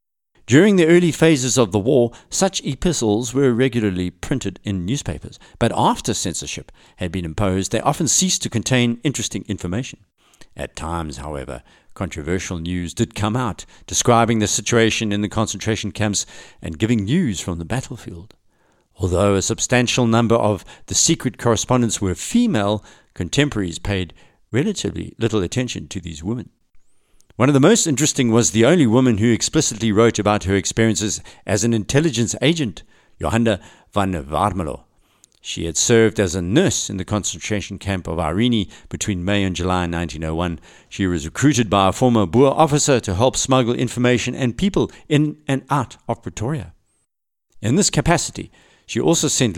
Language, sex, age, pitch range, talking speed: English, male, 50-69, 95-125 Hz, 155 wpm